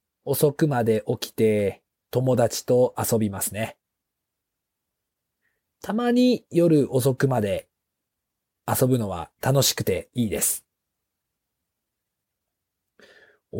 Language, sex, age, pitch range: Japanese, male, 40-59, 110-155 Hz